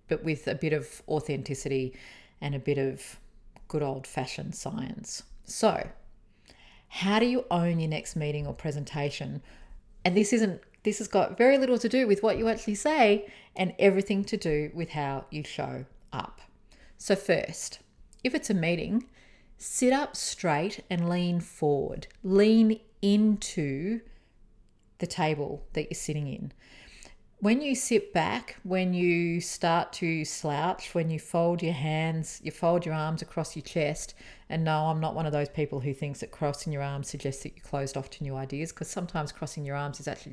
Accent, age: Australian, 40-59